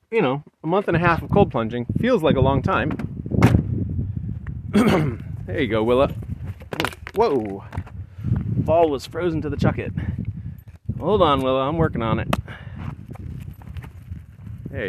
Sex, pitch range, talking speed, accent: male, 105-140 Hz, 135 wpm, American